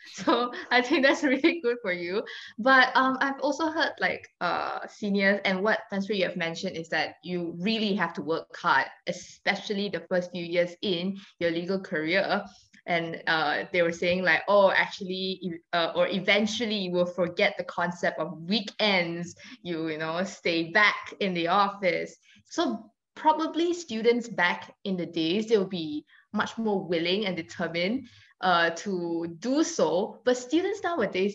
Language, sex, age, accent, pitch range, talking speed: English, female, 20-39, Malaysian, 170-230 Hz, 165 wpm